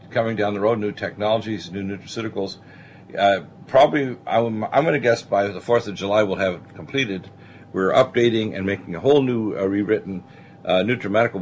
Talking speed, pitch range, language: 185 wpm, 95-115 Hz, English